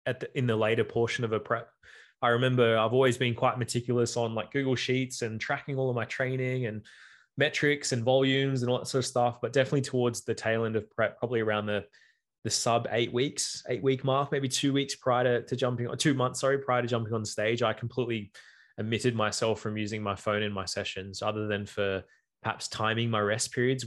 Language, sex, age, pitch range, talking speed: English, male, 20-39, 110-130 Hz, 225 wpm